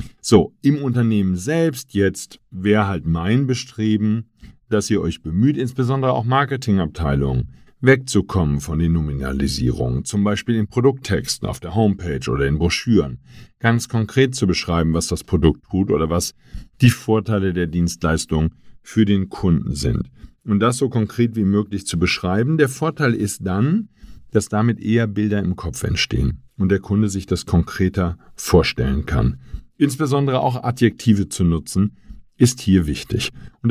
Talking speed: 150 wpm